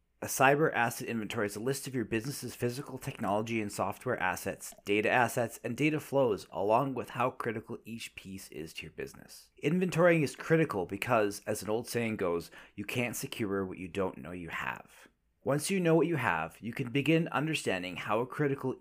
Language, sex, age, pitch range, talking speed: English, male, 30-49, 100-140 Hz, 190 wpm